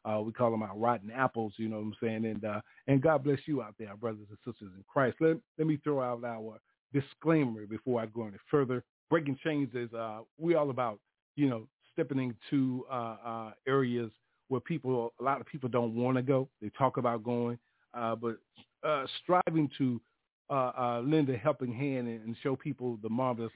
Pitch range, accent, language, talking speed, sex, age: 115-135 Hz, American, English, 205 wpm, male, 40-59